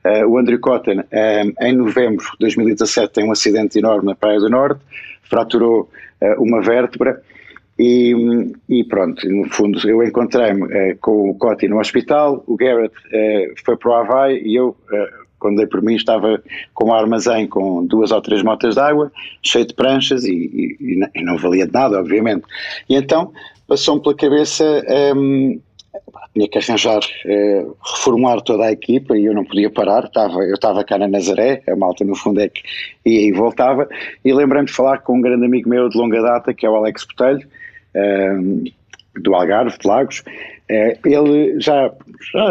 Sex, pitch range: male, 105-140 Hz